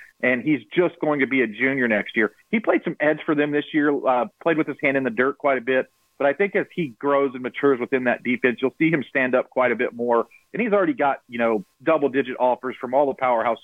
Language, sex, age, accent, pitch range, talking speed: English, male, 40-59, American, 130-160 Hz, 270 wpm